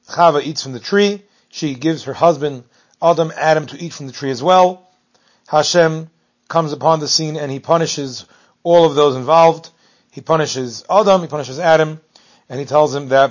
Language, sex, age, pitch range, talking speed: English, male, 40-59, 140-170 Hz, 185 wpm